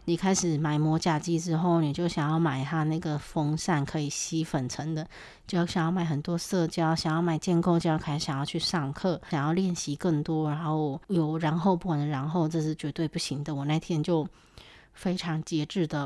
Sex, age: female, 20-39